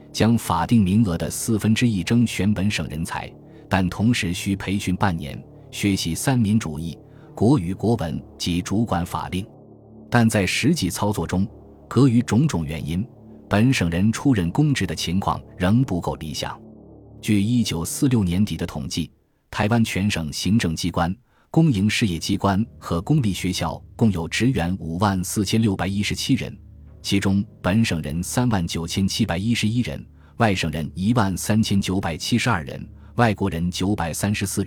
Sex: male